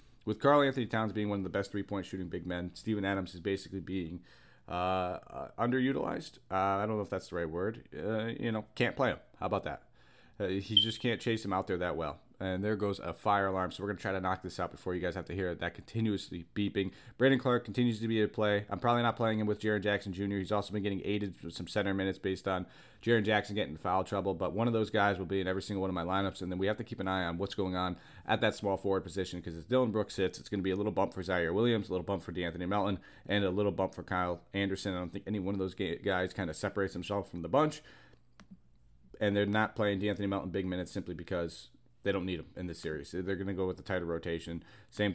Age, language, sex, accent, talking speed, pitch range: 30-49, English, male, American, 275 wpm, 90-105 Hz